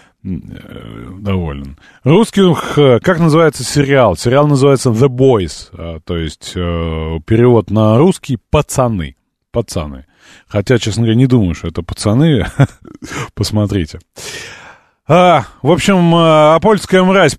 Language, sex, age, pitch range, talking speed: Russian, male, 30-49, 90-140 Hz, 100 wpm